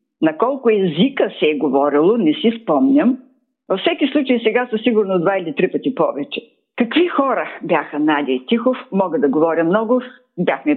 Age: 50-69